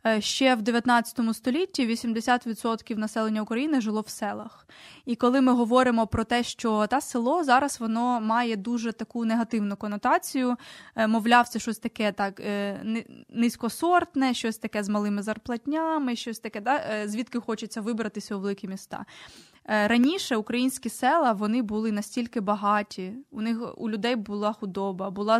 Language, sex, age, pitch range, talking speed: Ukrainian, female, 20-39, 210-240 Hz, 140 wpm